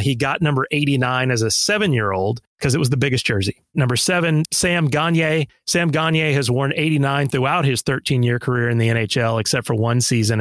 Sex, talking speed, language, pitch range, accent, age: male, 190 wpm, English, 120-155 Hz, American, 30-49